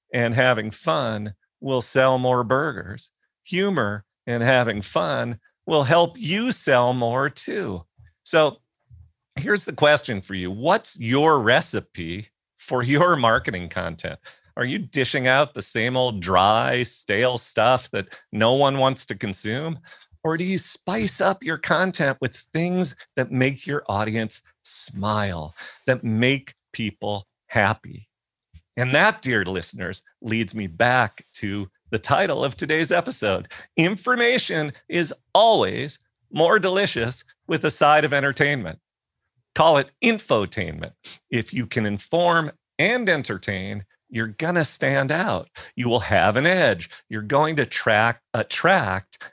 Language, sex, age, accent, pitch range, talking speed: English, male, 40-59, American, 110-155 Hz, 135 wpm